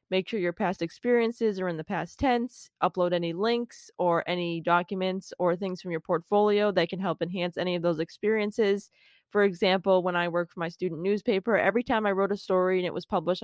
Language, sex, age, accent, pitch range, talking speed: English, female, 20-39, American, 175-205 Hz, 215 wpm